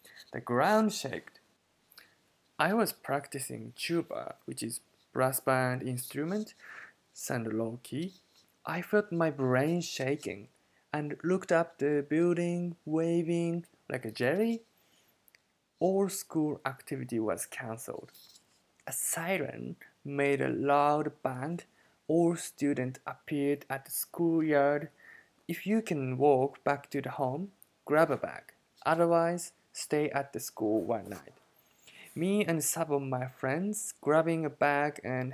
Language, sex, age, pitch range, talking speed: English, male, 20-39, 135-170 Hz, 125 wpm